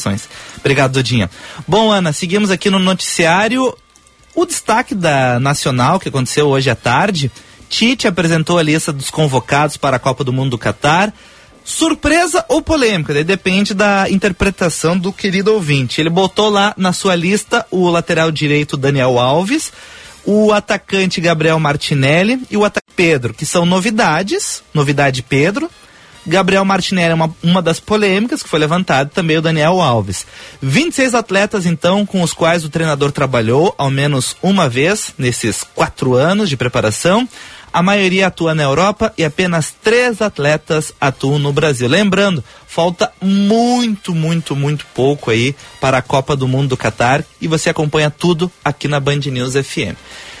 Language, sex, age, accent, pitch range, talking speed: Portuguese, male, 30-49, Brazilian, 140-200 Hz, 155 wpm